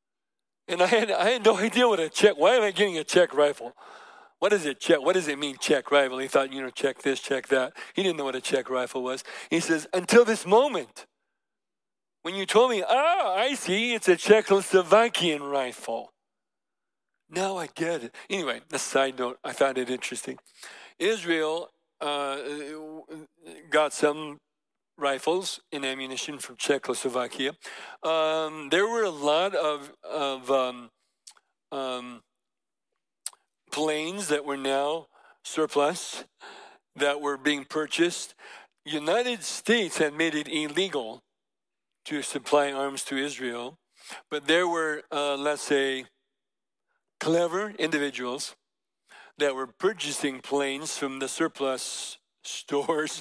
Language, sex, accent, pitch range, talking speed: English, male, American, 135-170 Hz, 140 wpm